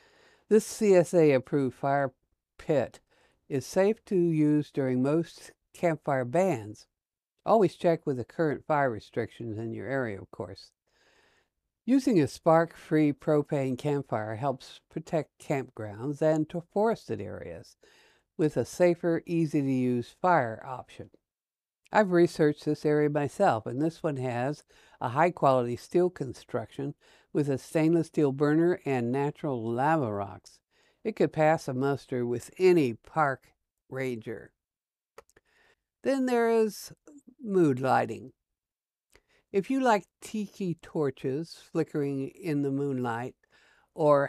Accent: American